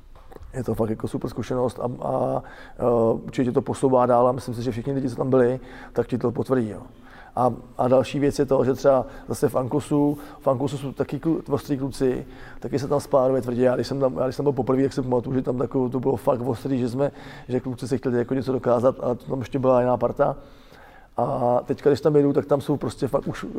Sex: male